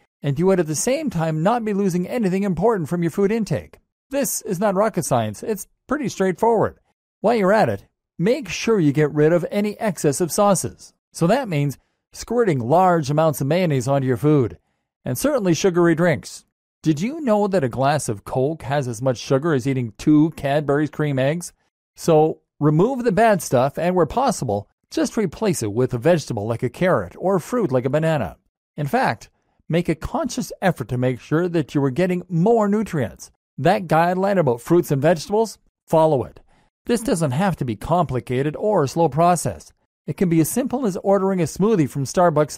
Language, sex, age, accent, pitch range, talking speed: English, male, 40-59, American, 140-195 Hz, 195 wpm